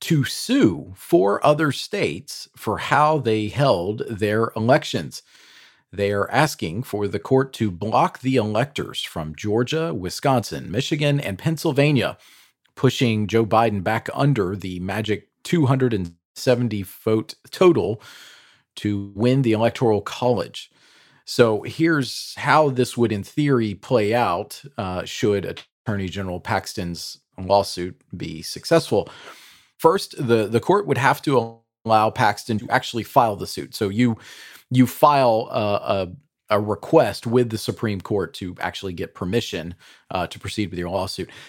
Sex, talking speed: male, 135 wpm